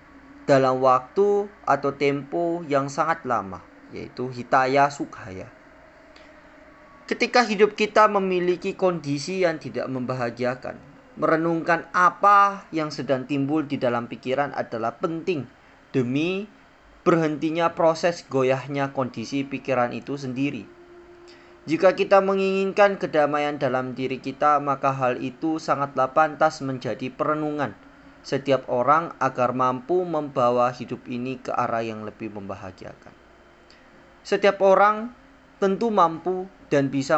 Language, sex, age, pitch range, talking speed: Indonesian, male, 20-39, 130-180 Hz, 110 wpm